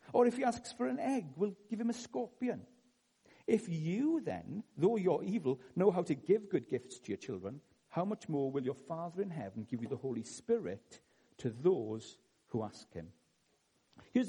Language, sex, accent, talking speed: English, male, British, 195 wpm